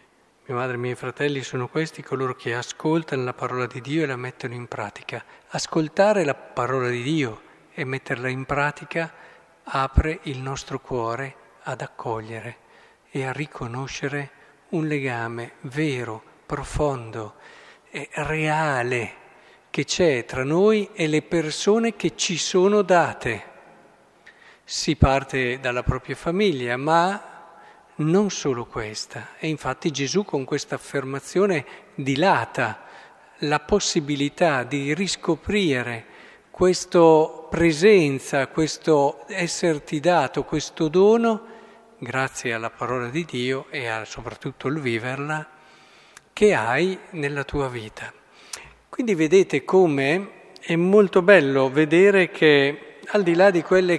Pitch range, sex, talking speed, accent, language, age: 130-170 Hz, male, 120 wpm, native, Italian, 50-69